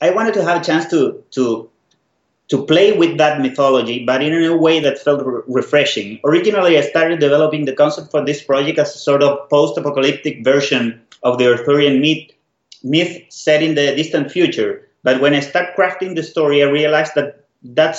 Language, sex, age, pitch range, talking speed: English, male, 30-49, 130-155 Hz, 190 wpm